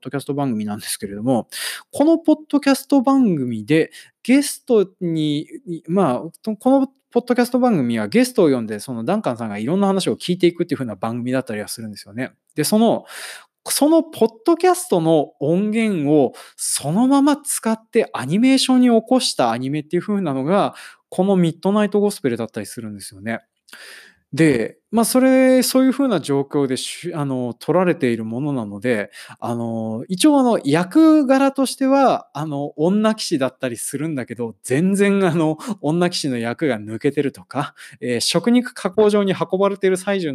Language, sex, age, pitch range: Japanese, male, 20-39, 130-220 Hz